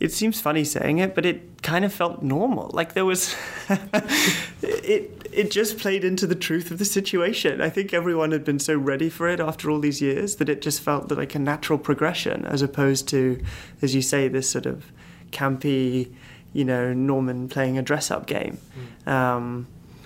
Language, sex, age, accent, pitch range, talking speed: English, male, 20-39, British, 130-155 Hz, 190 wpm